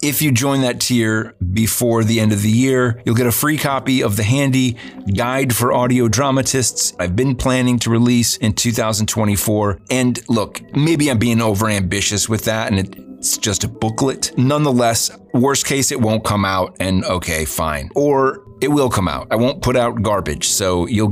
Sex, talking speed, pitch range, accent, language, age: male, 185 wpm, 100-125 Hz, American, English, 30-49